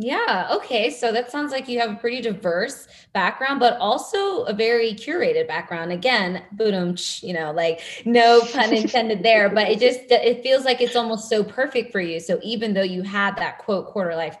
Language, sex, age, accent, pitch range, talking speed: English, female, 20-39, American, 175-230 Hz, 195 wpm